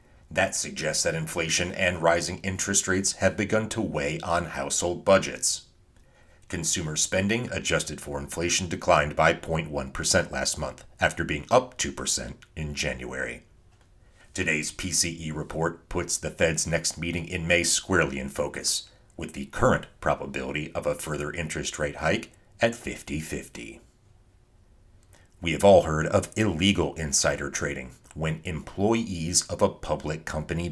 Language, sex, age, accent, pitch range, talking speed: English, male, 40-59, American, 75-95 Hz, 135 wpm